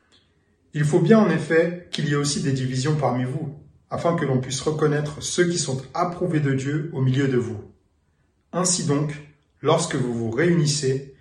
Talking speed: 180 wpm